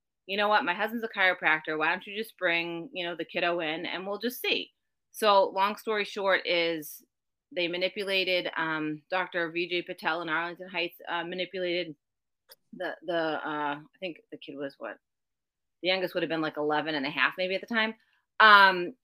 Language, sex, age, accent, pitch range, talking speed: English, female, 30-49, American, 165-210 Hz, 190 wpm